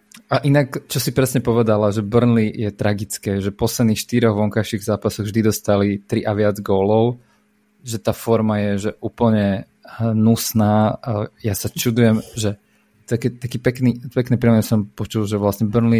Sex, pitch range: male, 105-120 Hz